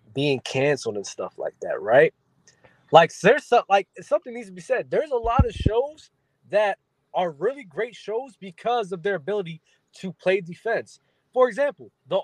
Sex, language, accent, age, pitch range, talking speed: male, English, American, 20-39, 145-200 Hz, 175 wpm